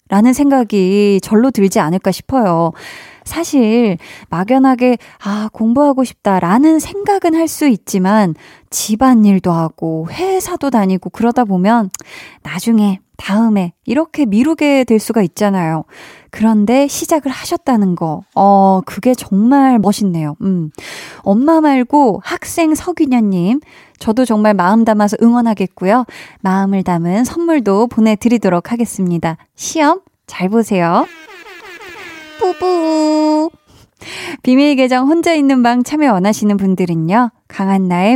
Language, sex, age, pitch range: Korean, female, 20-39, 180-270 Hz